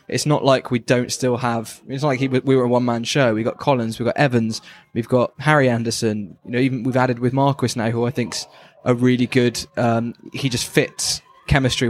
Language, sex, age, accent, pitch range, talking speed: English, male, 10-29, British, 120-140 Hz, 220 wpm